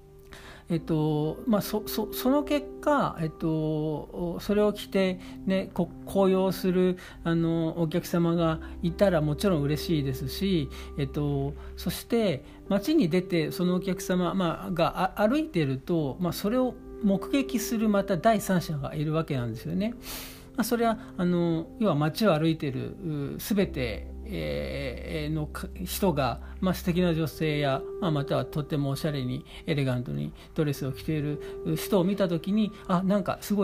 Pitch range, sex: 145-195 Hz, male